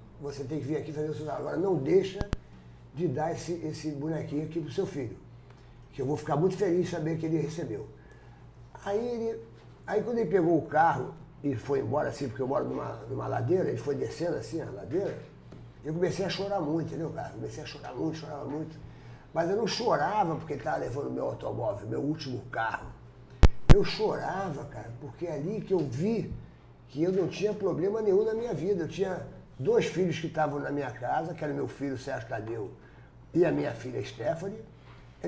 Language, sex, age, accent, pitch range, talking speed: Portuguese, male, 50-69, Brazilian, 135-195 Hz, 210 wpm